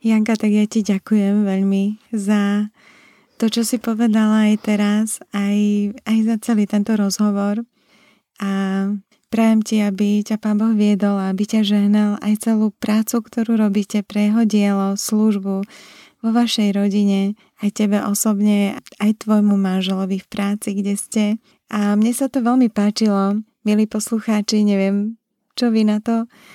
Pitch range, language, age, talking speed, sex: 200-220 Hz, Slovak, 20-39, 145 wpm, female